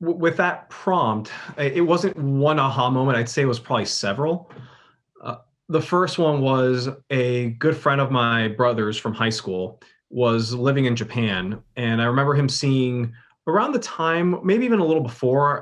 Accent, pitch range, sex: American, 115-140 Hz, male